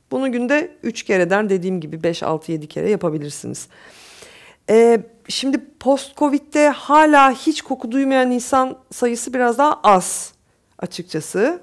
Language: Turkish